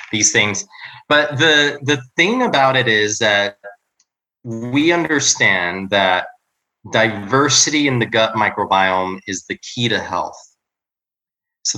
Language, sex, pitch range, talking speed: English, male, 105-140 Hz, 120 wpm